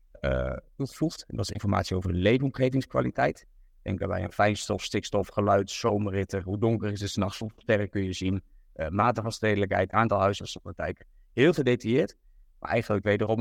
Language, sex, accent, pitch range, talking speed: Dutch, male, Dutch, 90-110 Hz, 155 wpm